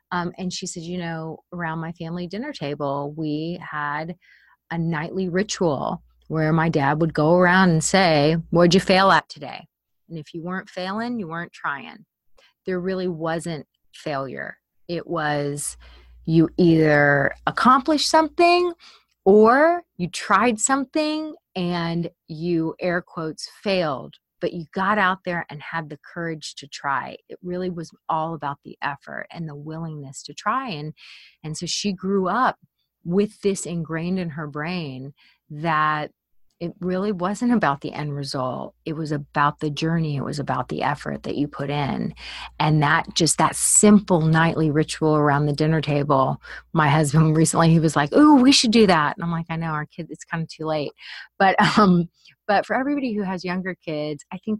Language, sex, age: English, female, 30-49